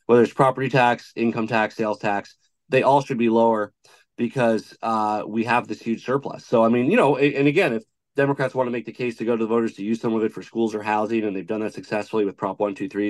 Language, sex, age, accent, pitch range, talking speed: English, male, 30-49, American, 95-115 Hz, 255 wpm